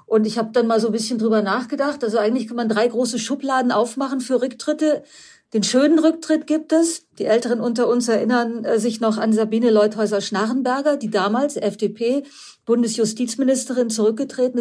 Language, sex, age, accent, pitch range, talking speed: German, female, 50-69, German, 215-265 Hz, 160 wpm